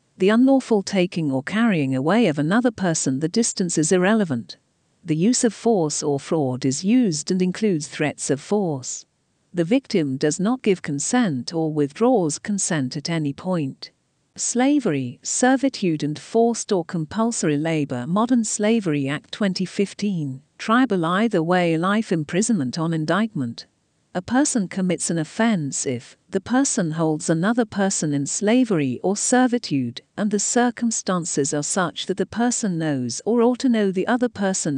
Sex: female